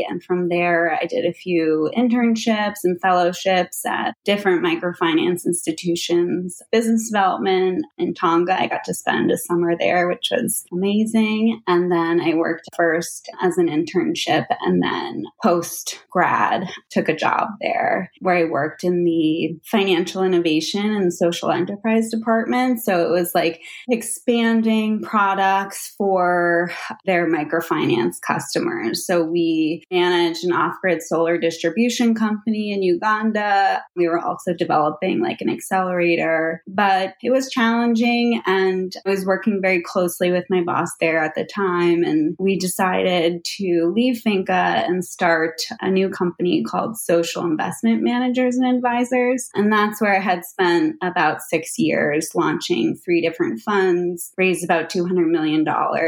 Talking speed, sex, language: 140 wpm, female, English